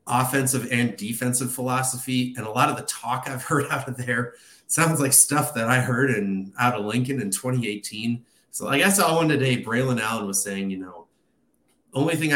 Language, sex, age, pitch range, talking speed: English, male, 30-49, 105-140 Hz, 205 wpm